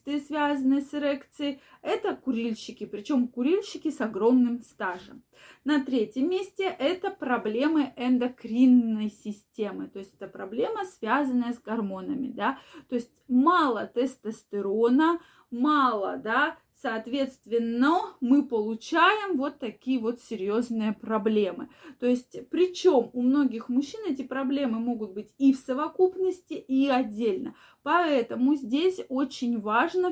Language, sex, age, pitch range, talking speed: Russian, female, 20-39, 225-285 Hz, 115 wpm